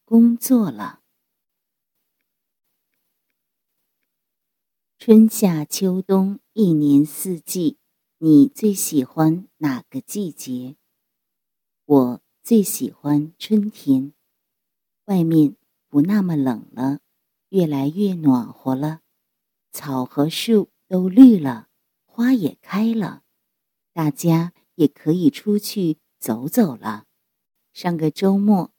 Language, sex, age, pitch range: English, female, 50-69, 150-215 Hz